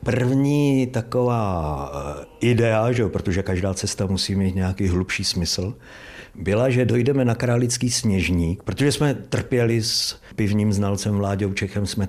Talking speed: 140 wpm